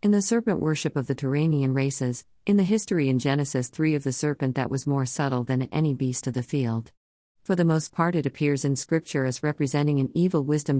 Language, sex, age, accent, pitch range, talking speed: Malayalam, female, 50-69, American, 130-160 Hz, 220 wpm